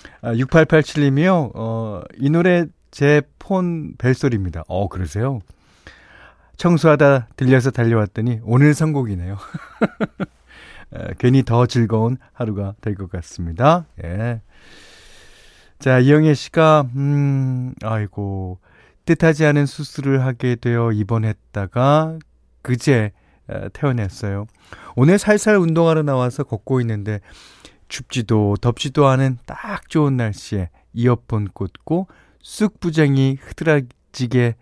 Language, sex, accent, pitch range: Korean, male, native, 100-140 Hz